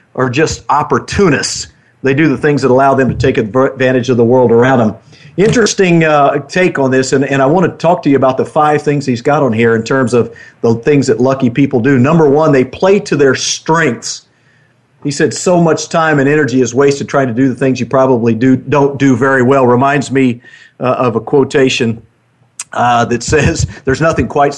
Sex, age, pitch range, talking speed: male, 50-69, 120-145 Hz, 210 wpm